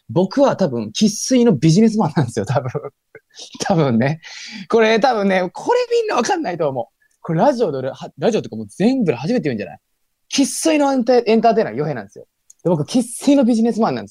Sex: male